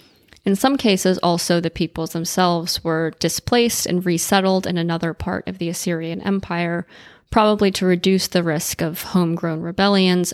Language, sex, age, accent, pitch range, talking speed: English, female, 20-39, American, 165-185 Hz, 150 wpm